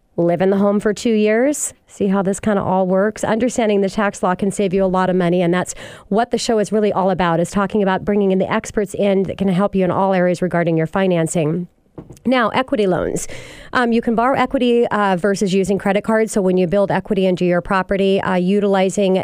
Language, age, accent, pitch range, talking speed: English, 40-59, American, 180-215 Hz, 235 wpm